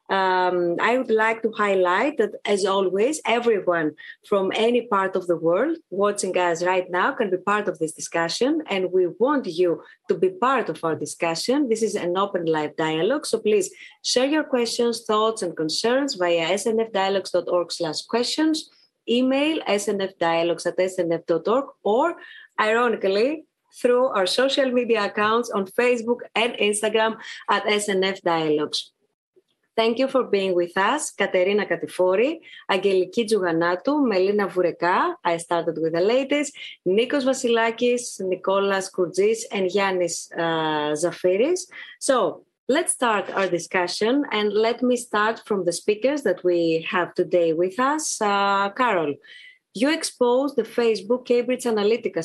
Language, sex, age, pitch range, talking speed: Greek, female, 30-49, 180-245 Hz, 140 wpm